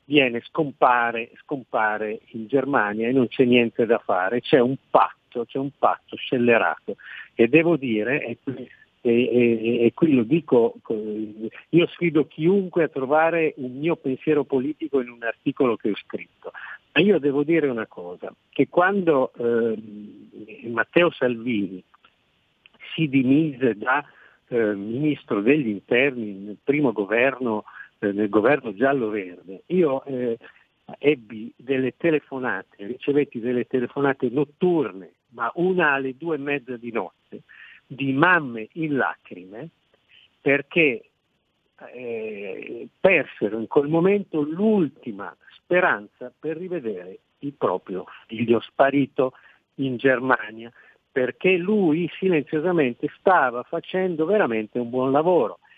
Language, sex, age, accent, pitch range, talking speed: Italian, male, 50-69, native, 115-155 Hz, 120 wpm